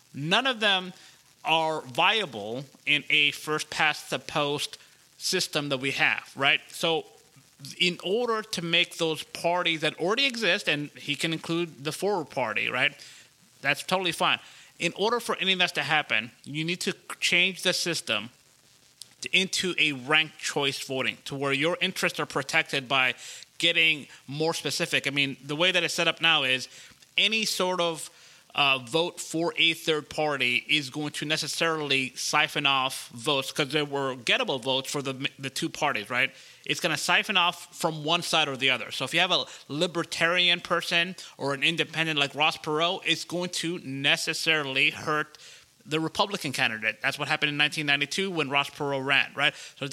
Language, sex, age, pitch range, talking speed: English, male, 30-49, 140-175 Hz, 175 wpm